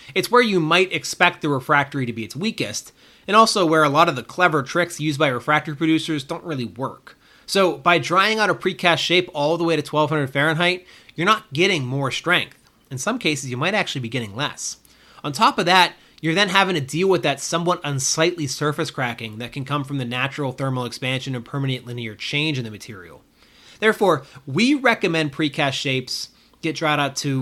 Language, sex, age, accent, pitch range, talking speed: English, male, 30-49, American, 130-170 Hz, 205 wpm